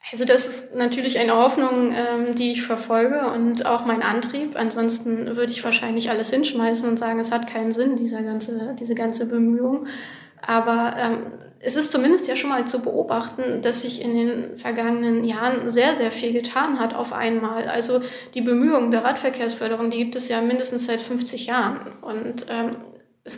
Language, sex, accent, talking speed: German, female, German, 170 wpm